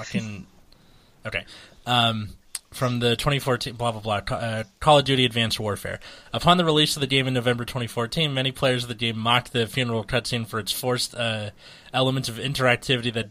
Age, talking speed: 20-39, 185 wpm